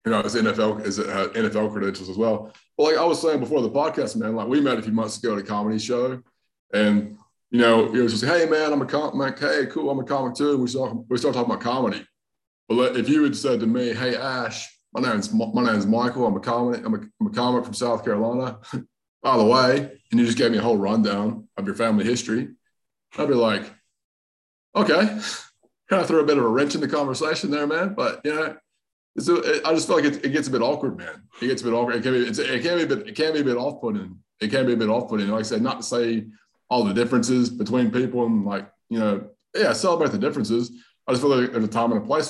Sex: male